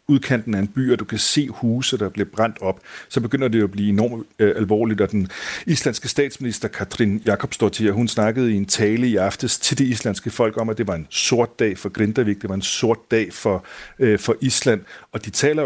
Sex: male